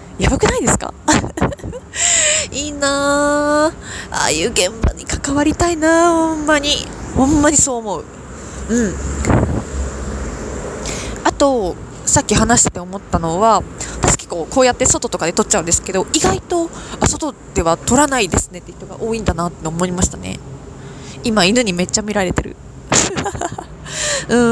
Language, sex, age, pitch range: Japanese, female, 20-39, 180-280 Hz